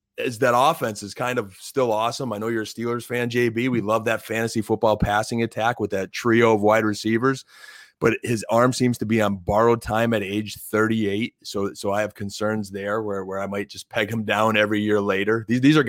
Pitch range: 105-120 Hz